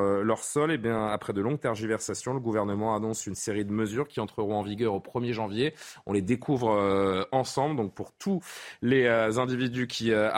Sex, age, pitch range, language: male, 30-49, 110-145 Hz, French